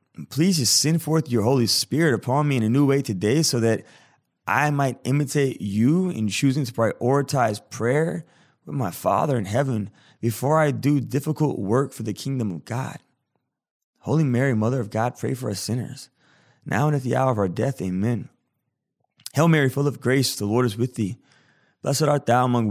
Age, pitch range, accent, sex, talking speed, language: 20-39, 110-140 Hz, American, male, 190 wpm, English